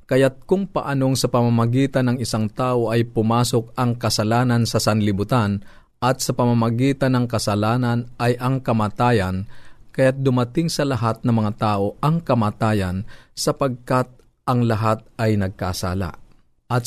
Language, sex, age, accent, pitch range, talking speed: Filipino, male, 40-59, native, 110-130 Hz, 130 wpm